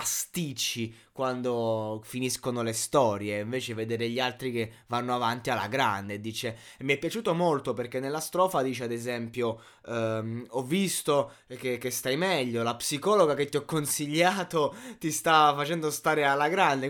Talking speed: 155 wpm